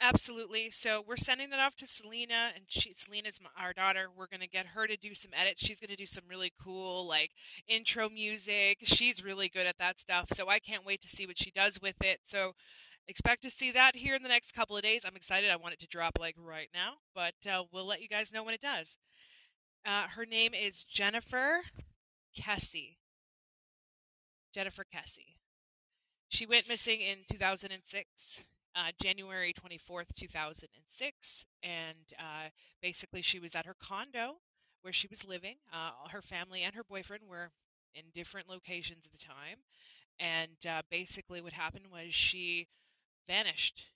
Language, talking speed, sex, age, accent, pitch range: English, 175 wpm, female, 20-39, American, 170-210 Hz